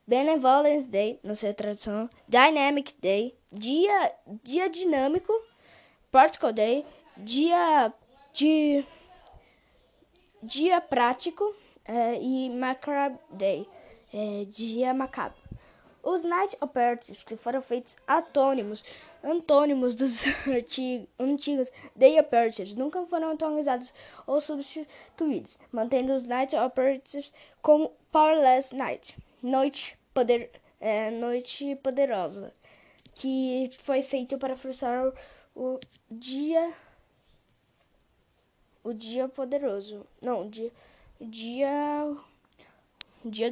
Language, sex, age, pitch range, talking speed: Portuguese, female, 10-29, 240-300 Hz, 90 wpm